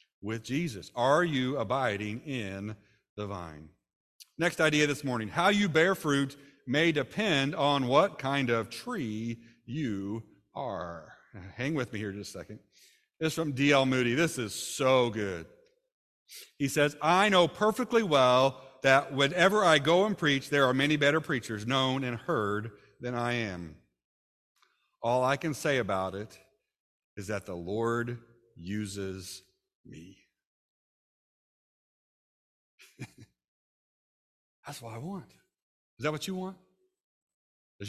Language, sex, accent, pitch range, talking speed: English, male, American, 105-145 Hz, 135 wpm